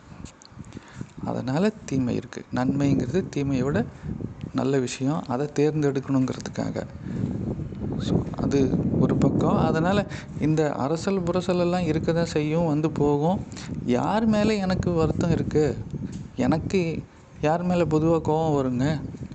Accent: native